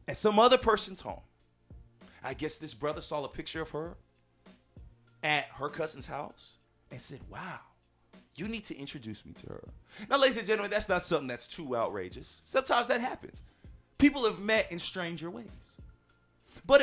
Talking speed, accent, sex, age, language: 170 wpm, American, male, 30-49, English